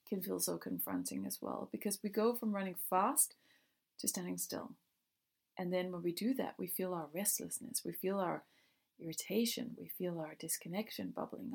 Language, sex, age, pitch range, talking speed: English, female, 30-49, 165-205 Hz, 175 wpm